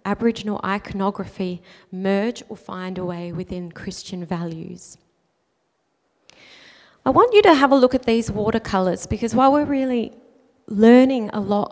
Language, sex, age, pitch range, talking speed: English, female, 30-49, 185-225 Hz, 140 wpm